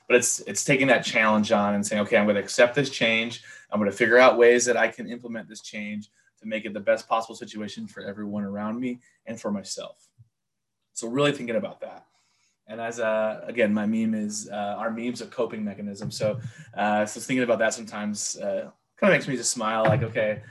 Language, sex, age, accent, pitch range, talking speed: English, male, 20-39, American, 105-125 Hz, 215 wpm